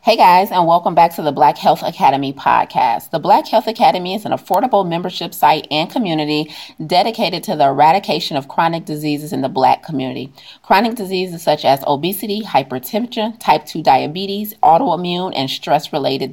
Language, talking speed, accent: English, 165 wpm, American